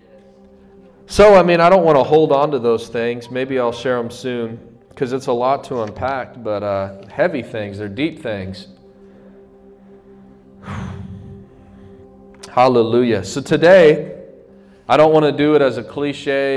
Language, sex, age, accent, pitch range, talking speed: English, male, 30-49, American, 100-140 Hz, 150 wpm